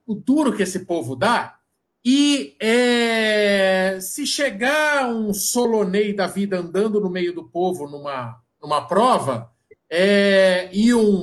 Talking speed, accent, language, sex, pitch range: 125 wpm, Brazilian, Portuguese, male, 180-240 Hz